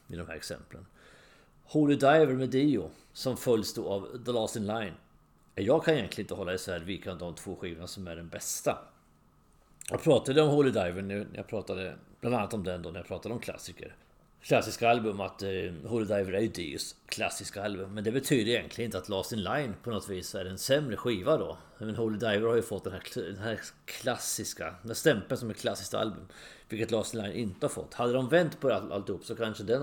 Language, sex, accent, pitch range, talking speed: English, male, Swedish, 90-125 Hz, 225 wpm